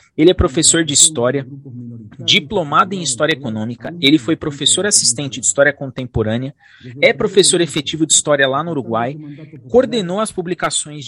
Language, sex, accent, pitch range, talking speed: Portuguese, male, Brazilian, 120-160 Hz, 145 wpm